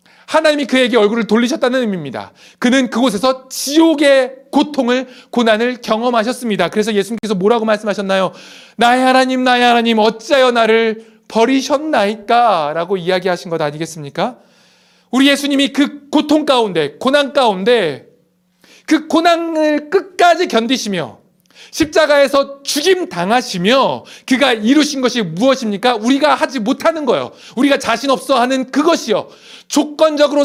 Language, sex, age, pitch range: Korean, male, 40-59, 220-280 Hz